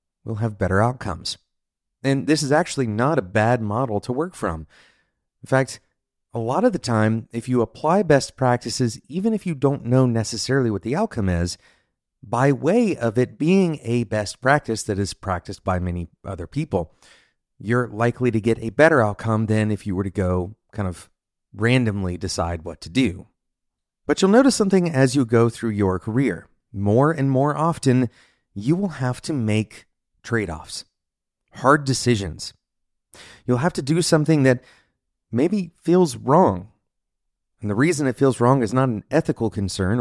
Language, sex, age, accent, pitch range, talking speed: English, male, 30-49, American, 95-135 Hz, 170 wpm